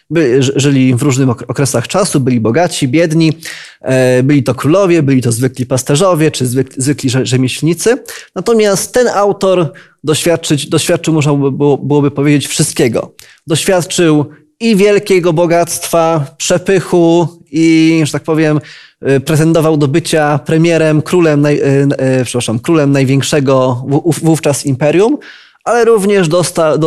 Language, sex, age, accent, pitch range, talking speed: Polish, male, 20-39, native, 140-170 Hz, 105 wpm